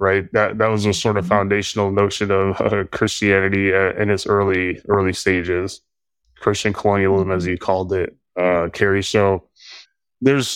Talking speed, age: 160 wpm, 20-39